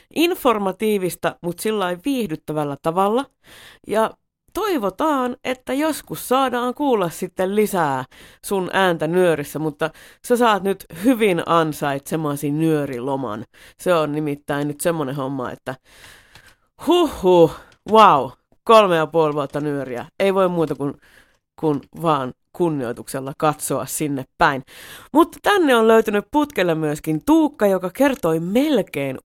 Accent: native